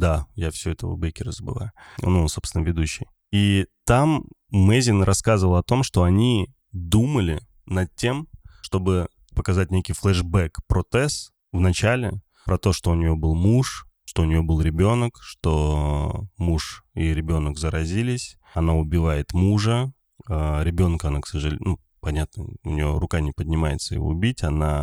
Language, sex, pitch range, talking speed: Russian, male, 80-100 Hz, 155 wpm